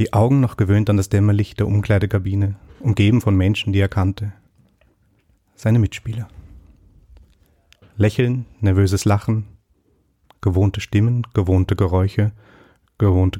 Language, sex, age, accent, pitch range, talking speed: German, male, 30-49, German, 95-105 Hz, 110 wpm